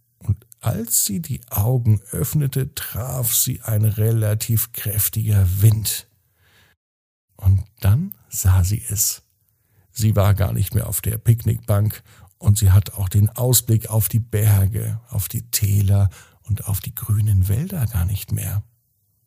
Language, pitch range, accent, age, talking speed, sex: German, 100-120 Hz, German, 50-69, 135 wpm, male